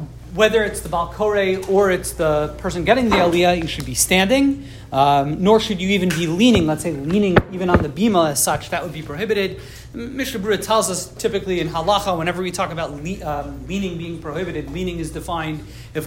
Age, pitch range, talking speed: 30-49, 160-215 Hz, 205 wpm